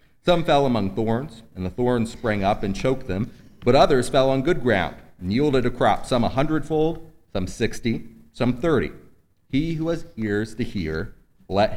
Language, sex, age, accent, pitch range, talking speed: English, male, 30-49, American, 110-135 Hz, 185 wpm